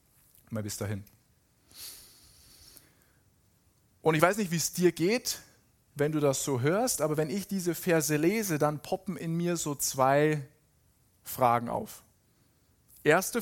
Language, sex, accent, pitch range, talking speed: German, male, German, 135-175 Hz, 140 wpm